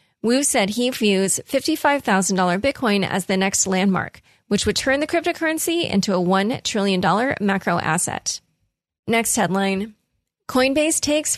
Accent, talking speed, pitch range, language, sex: American, 130 wpm, 195-245 Hz, English, female